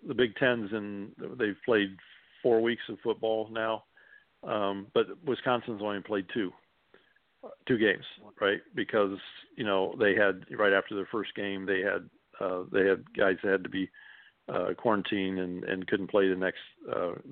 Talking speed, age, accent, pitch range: 170 wpm, 50-69, American, 100-120 Hz